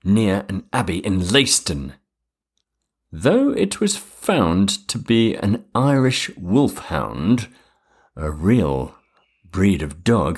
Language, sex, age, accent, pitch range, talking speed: English, male, 50-69, British, 80-115 Hz, 110 wpm